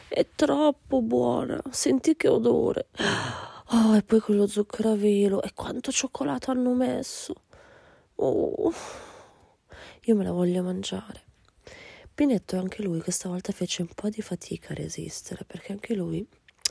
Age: 20-39